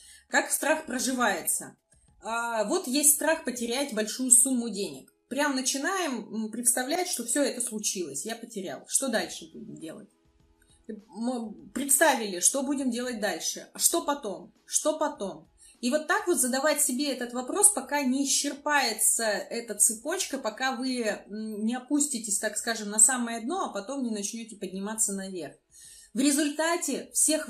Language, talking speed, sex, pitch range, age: Russian, 140 wpm, female, 215-285 Hz, 30-49